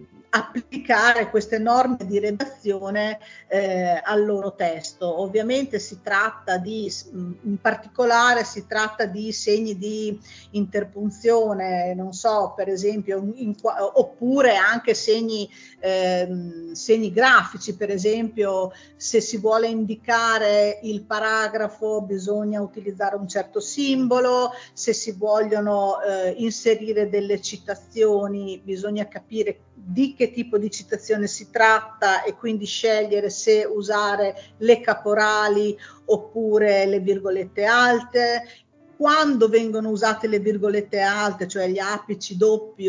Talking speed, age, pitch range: 115 wpm, 50-69, 200-225 Hz